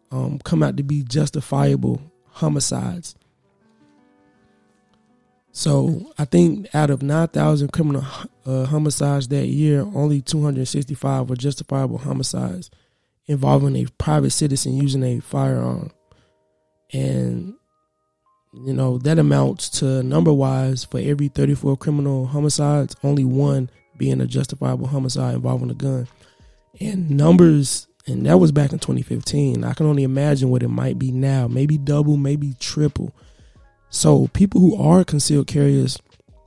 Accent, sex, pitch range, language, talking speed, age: American, male, 90-150 Hz, English, 140 wpm, 20-39